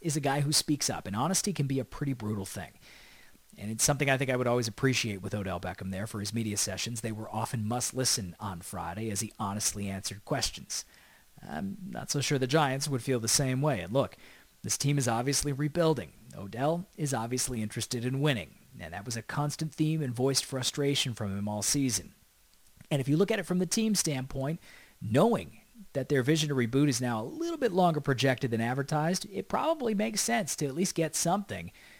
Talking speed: 215 wpm